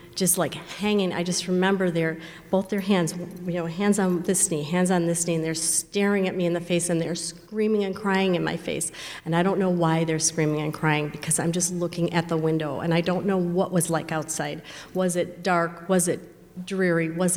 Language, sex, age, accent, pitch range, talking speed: English, female, 40-59, American, 165-195 Hz, 230 wpm